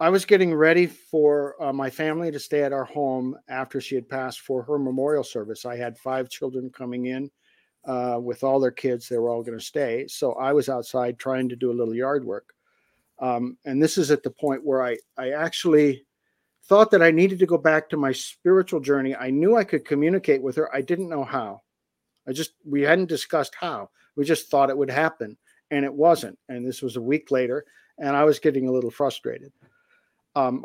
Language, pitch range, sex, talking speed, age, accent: English, 130-155 Hz, male, 215 wpm, 50-69, American